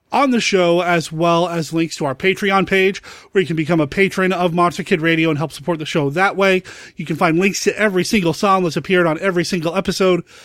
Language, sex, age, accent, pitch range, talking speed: English, male, 30-49, American, 165-200 Hz, 240 wpm